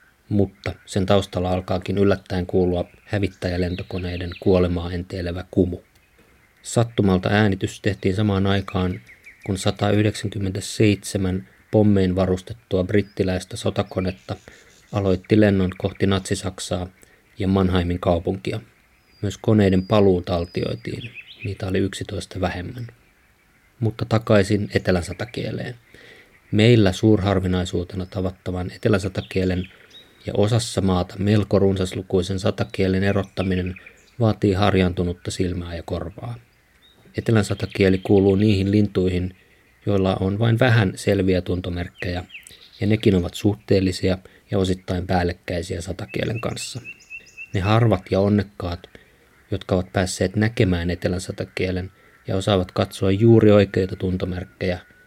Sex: male